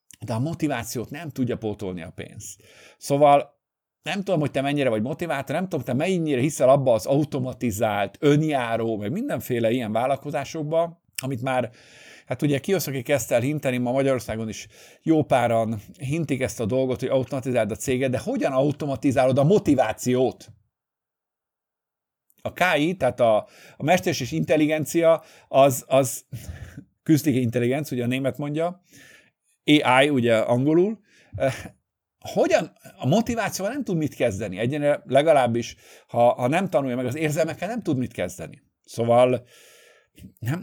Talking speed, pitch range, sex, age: 140 wpm, 120-155 Hz, male, 50-69